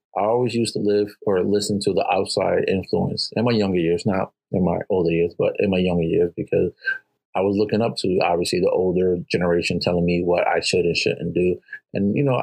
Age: 30-49